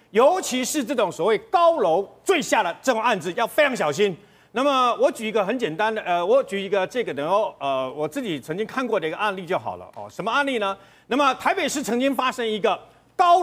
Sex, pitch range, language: male, 215-295 Hz, Chinese